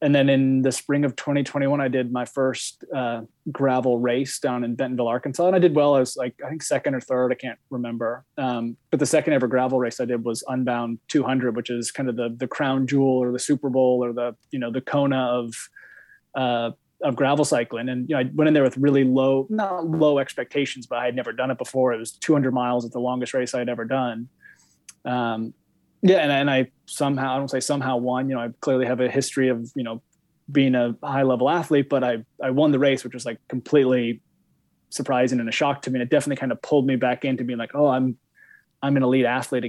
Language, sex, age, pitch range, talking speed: English, male, 20-39, 125-140 Hz, 240 wpm